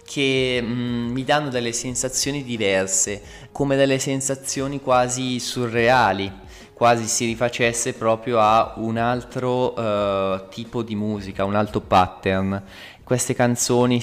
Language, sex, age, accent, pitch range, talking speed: Italian, male, 20-39, native, 100-120 Hz, 115 wpm